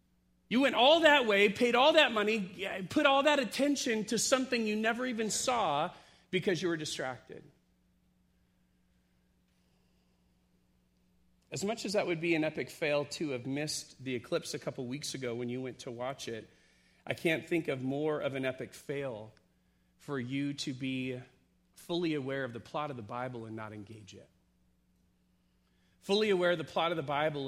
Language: English